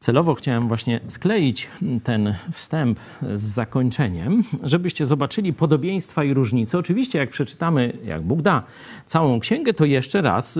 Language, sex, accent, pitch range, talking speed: Polish, male, native, 115-160 Hz, 135 wpm